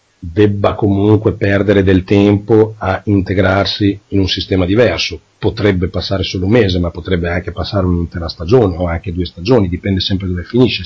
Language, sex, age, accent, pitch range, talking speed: Italian, male, 40-59, native, 90-105 Hz, 165 wpm